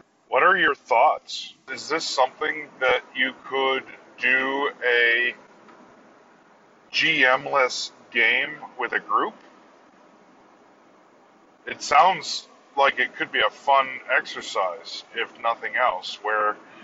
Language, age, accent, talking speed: English, 40-59, American, 105 wpm